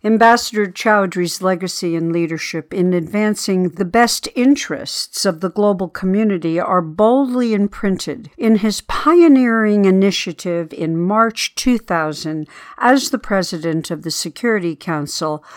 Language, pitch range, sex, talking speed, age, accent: English, 175-230 Hz, female, 120 wpm, 60-79, American